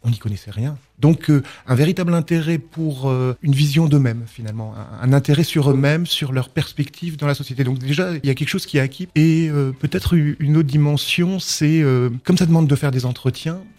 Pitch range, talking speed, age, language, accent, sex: 120-150 Hz, 220 wpm, 30-49, French, French, male